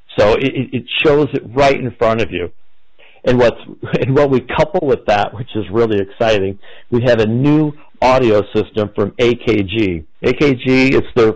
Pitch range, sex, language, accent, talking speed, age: 105-125 Hz, male, English, American, 170 wpm, 50-69